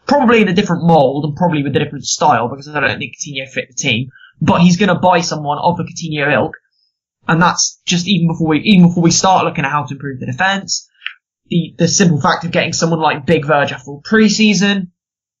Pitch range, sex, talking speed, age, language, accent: 155-200 Hz, male, 225 wpm, 10-29, English, British